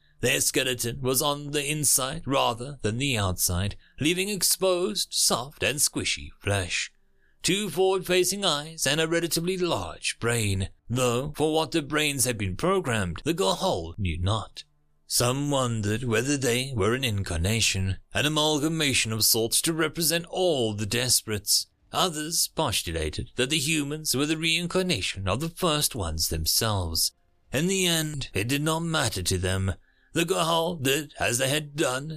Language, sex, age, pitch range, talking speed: English, male, 30-49, 100-165 Hz, 150 wpm